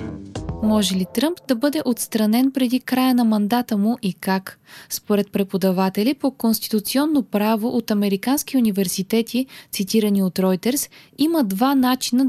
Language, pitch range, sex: Bulgarian, 205-260 Hz, female